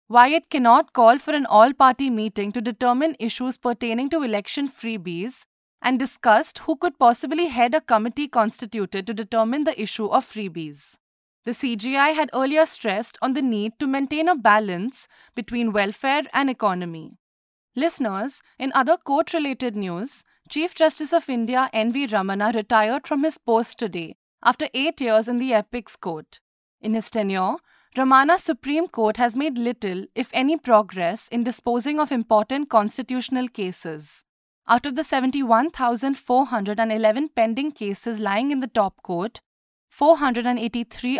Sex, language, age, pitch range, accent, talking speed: female, English, 20-39, 215-275 Hz, Indian, 145 wpm